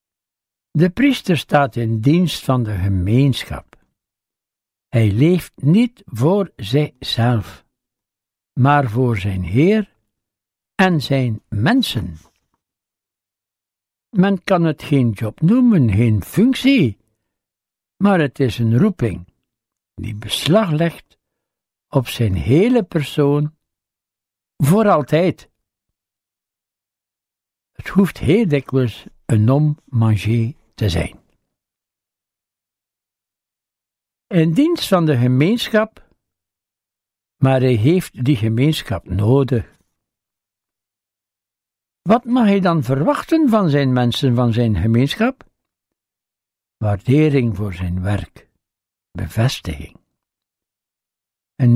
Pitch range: 100-145 Hz